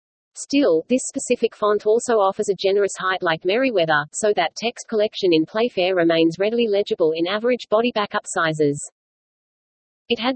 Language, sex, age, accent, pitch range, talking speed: English, female, 40-59, Australian, 175-225 Hz, 150 wpm